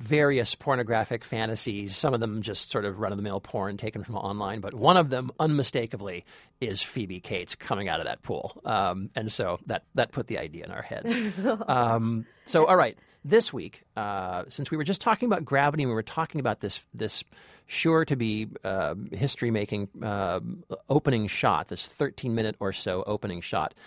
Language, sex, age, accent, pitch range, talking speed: English, male, 40-59, American, 105-145 Hz, 180 wpm